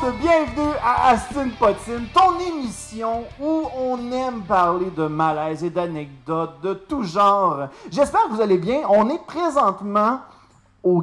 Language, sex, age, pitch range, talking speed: French, male, 30-49, 190-285 Hz, 140 wpm